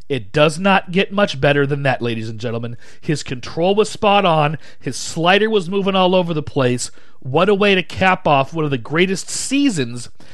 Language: English